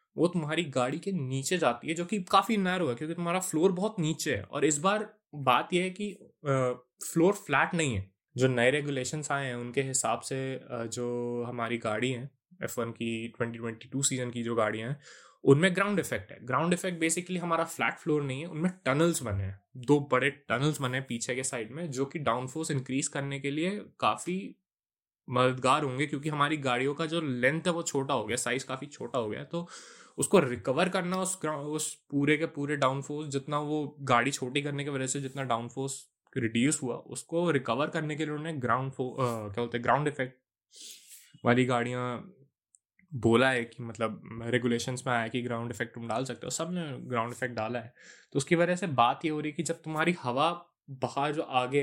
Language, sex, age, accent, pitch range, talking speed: Hindi, male, 20-39, native, 125-160 Hz, 205 wpm